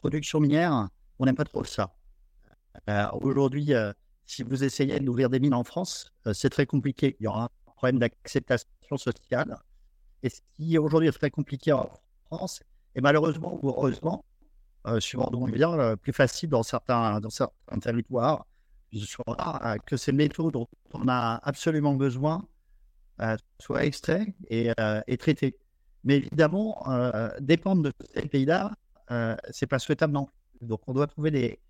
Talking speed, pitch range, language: 175 wpm, 115-150 Hz, French